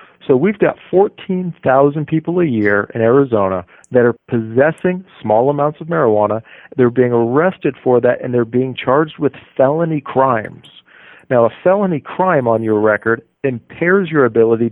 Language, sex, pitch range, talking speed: English, male, 115-165 Hz, 155 wpm